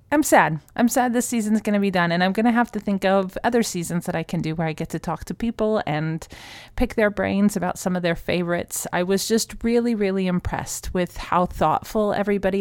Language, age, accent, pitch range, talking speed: English, 30-49, American, 160-195 Hz, 240 wpm